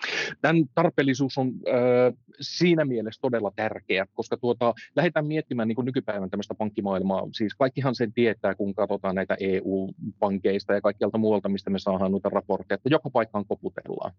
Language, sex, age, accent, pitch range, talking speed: Finnish, male, 30-49, native, 100-135 Hz, 150 wpm